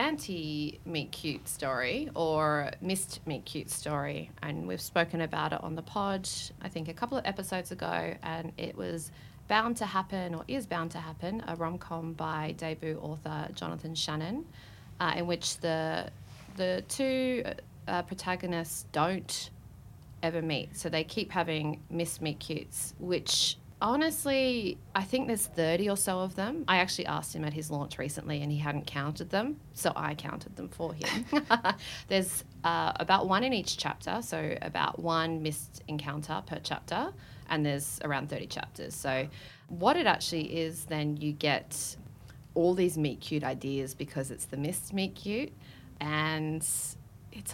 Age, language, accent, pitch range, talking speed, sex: 30-49, English, Australian, 145-180 Hz, 155 wpm, female